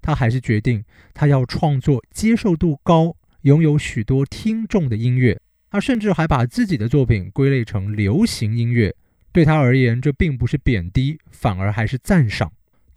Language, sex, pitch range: Chinese, male, 120-165 Hz